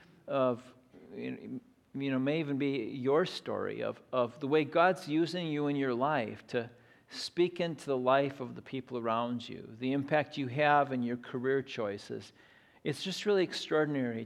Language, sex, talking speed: English, male, 170 wpm